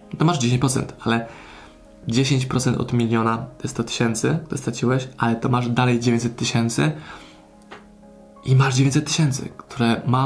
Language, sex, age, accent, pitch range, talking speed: Polish, male, 20-39, native, 115-135 Hz, 145 wpm